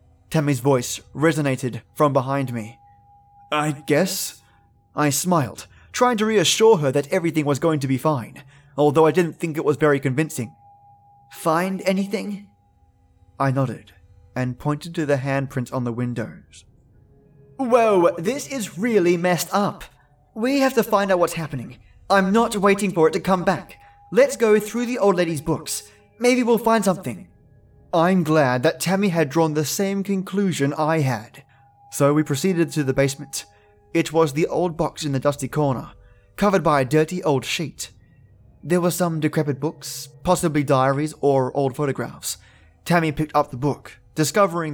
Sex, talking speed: male, 160 wpm